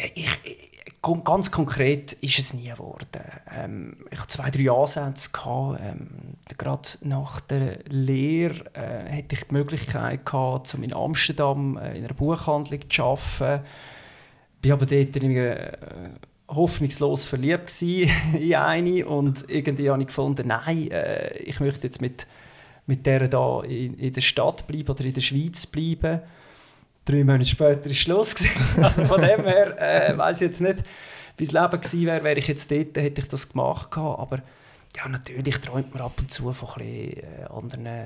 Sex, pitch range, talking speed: male, 130-150 Hz, 170 wpm